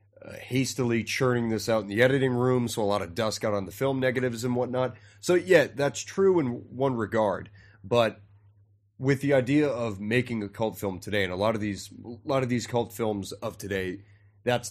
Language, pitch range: English, 100-120 Hz